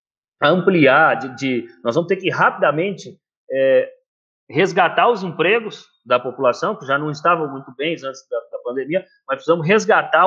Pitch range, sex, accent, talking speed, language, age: 155-230 Hz, male, Brazilian, 140 wpm, Portuguese, 30-49